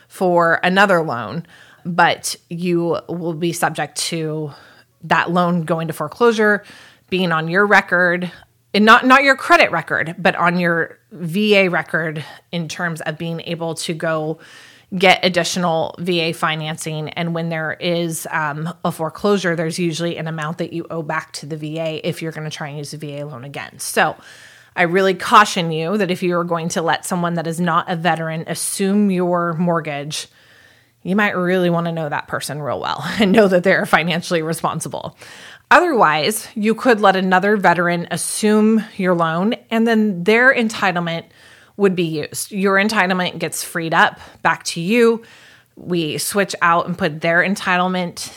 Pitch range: 160-190 Hz